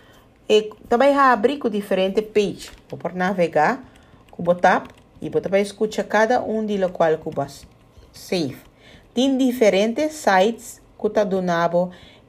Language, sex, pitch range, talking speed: Dutch, female, 170-225 Hz, 140 wpm